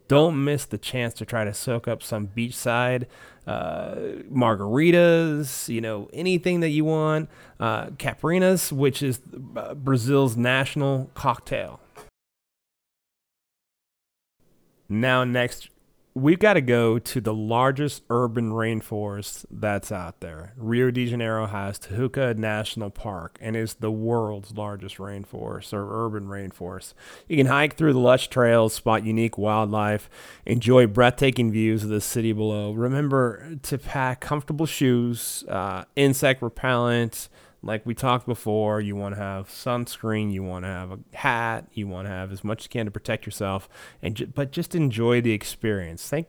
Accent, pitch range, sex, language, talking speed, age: American, 105-135 Hz, male, English, 150 wpm, 30-49